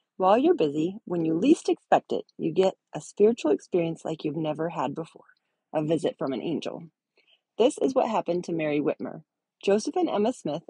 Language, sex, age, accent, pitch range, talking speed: English, female, 30-49, American, 160-215 Hz, 190 wpm